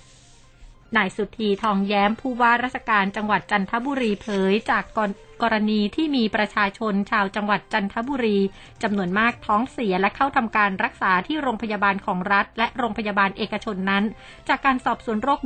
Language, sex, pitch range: Thai, female, 195-235 Hz